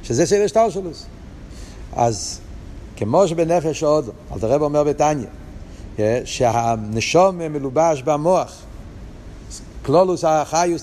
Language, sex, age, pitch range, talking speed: Hebrew, male, 60-79, 115-170 Hz, 85 wpm